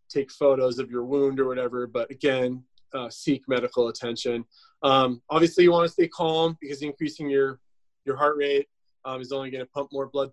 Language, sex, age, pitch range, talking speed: English, male, 20-39, 125-145 Hz, 185 wpm